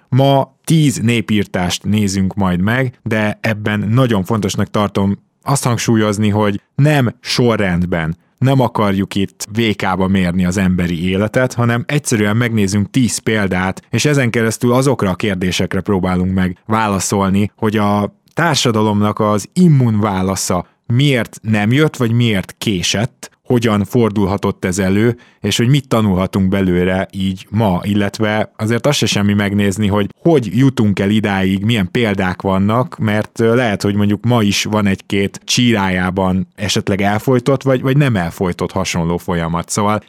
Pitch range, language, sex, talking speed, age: 95-120 Hz, Hungarian, male, 140 wpm, 20-39